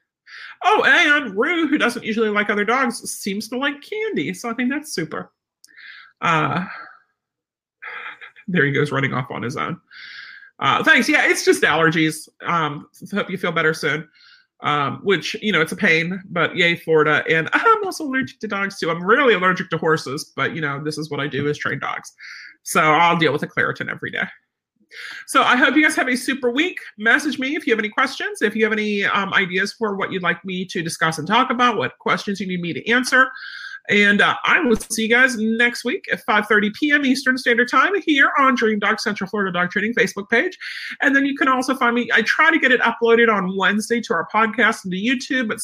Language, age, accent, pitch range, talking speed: English, 40-59, American, 180-260 Hz, 220 wpm